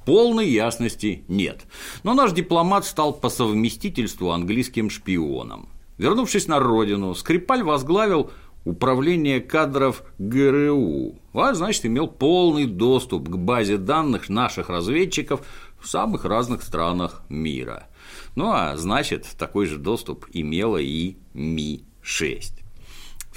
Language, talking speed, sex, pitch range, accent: Russian, 115 wpm, male, 90-145 Hz, native